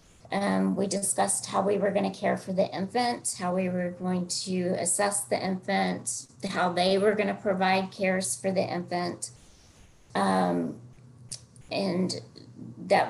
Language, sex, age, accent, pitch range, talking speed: English, female, 40-59, American, 155-190 Hz, 150 wpm